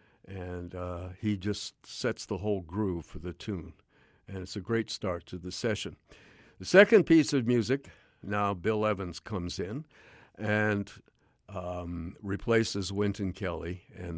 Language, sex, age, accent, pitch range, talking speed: English, male, 60-79, American, 95-120 Hz, 150 wpm